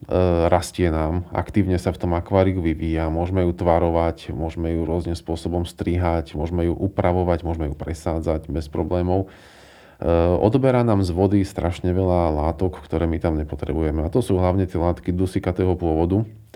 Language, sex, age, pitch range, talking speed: Slovak, male, 40-59, 85-95 Hz, 155 wpm